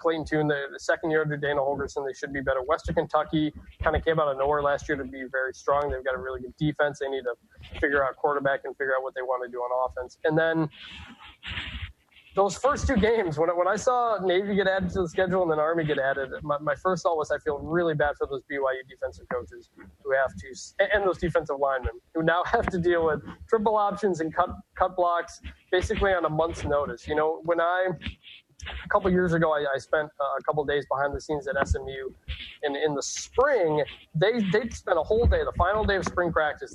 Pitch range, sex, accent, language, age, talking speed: 140-180 Hz, male, American, English, 20-39, 240 wpm